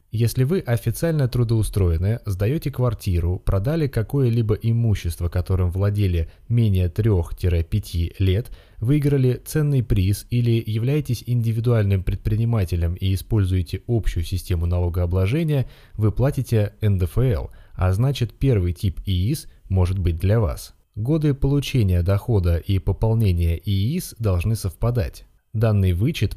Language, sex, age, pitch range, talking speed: Russian, male, 20-39, 90-120 Hz, 110 wpm